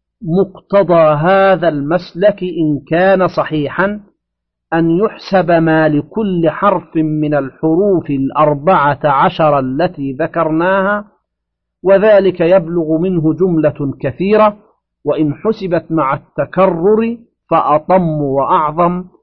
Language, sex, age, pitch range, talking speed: Arabic, male, 50-69, 145-185 Hz, 85 wpm